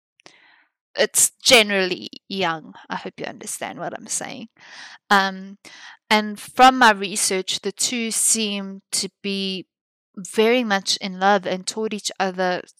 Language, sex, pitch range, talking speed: English, female, 185-215 Hz, 130 wpm